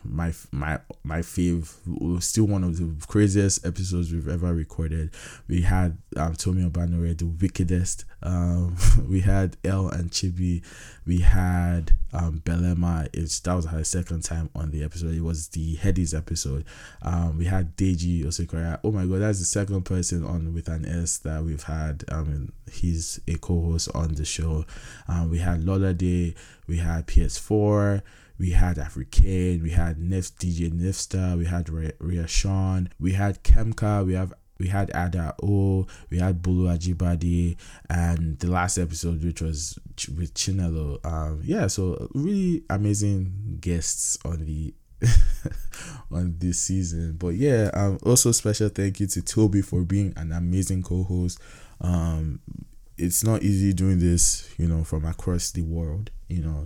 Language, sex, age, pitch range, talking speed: English, male, 20-39, 85-95 Hz, 160 wpm